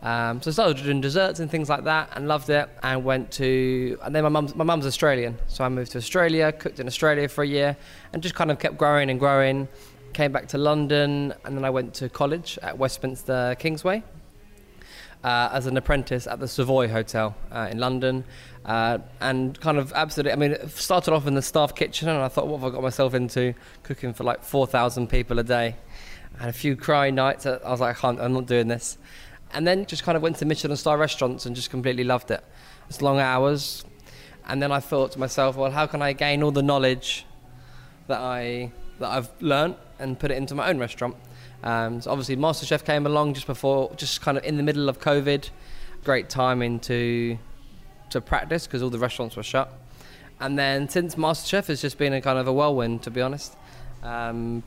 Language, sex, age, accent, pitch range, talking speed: English, male, 10-29, British, 125-145 Hz, 215 wpm